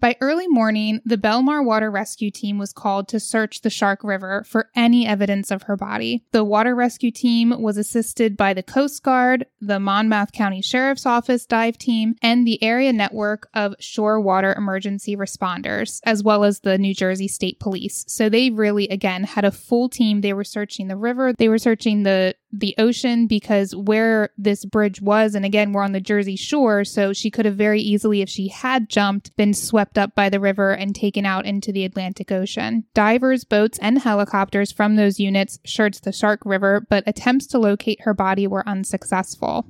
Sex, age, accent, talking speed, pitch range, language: female, 10-29, American, 195 wpm, 200-230 Hz, English